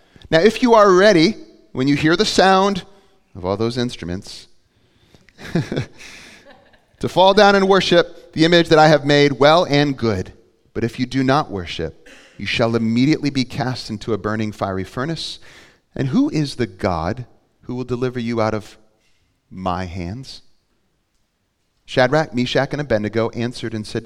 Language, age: English, 30-49